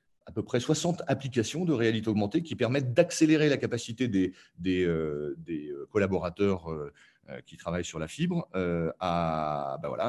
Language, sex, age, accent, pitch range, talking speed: French, male, 40-59, French, 90-130 Hz, 165 wpm